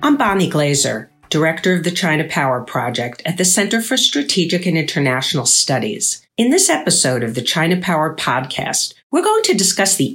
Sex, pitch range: female, 140-190 Hz